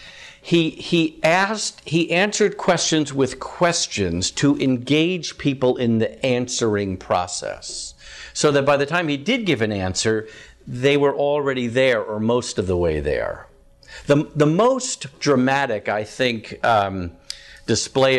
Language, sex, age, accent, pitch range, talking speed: English, male, 50-69, American, 115-170 Hz, 140 wpm